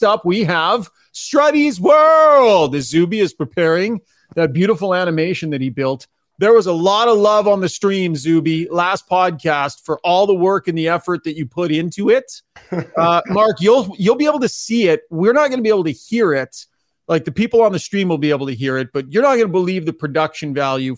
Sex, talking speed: male, 225 wpm